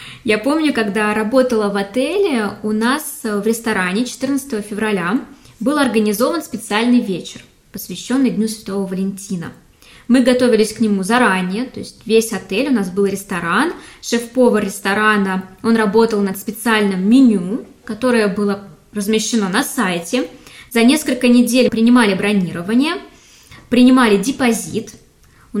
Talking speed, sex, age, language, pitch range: 125 wpm, female, 20-39, Russian, 205-250 Hz